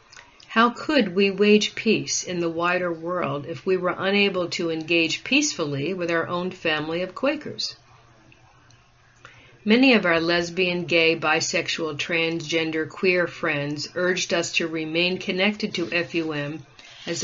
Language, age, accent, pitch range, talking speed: English, 50-69, American, 160-195 Hz, 135 wpm